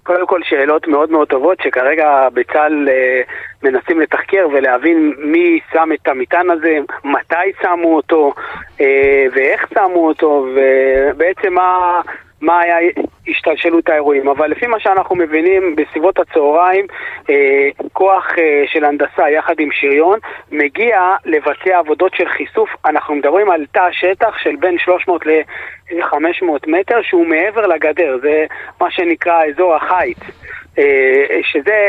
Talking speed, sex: 130 wpm, male